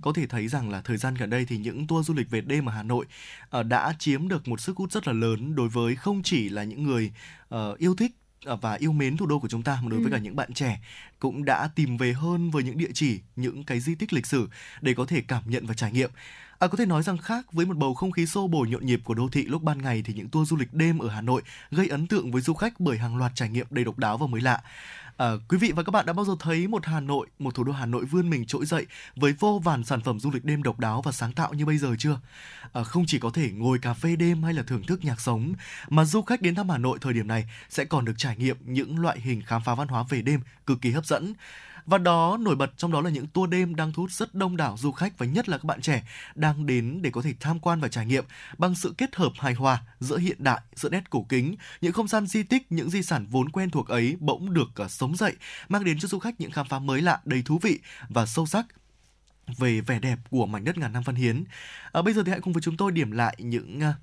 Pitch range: 125-170 Hz